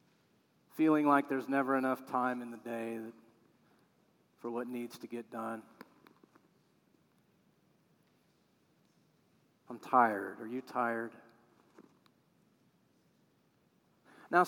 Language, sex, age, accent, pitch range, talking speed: English, male, 40-59, American, 155-255 Hz, 85 wpm